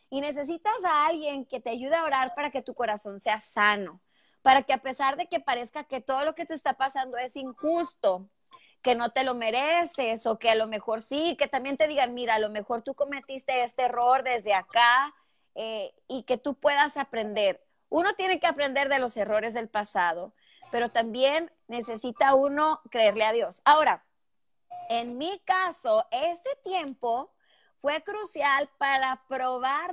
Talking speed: 175 wpm